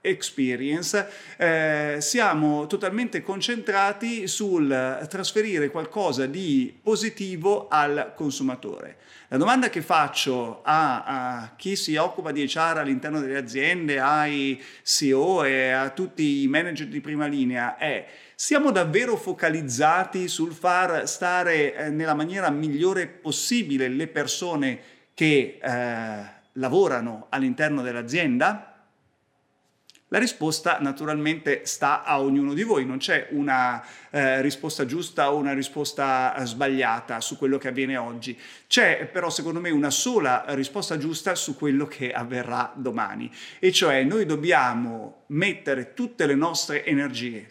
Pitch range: 135-185 Hz